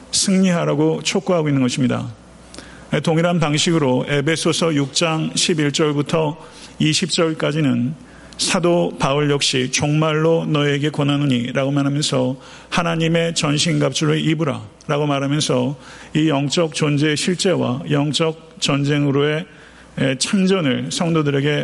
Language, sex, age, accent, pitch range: Korean, male, 40-59, native, 135-160 Hz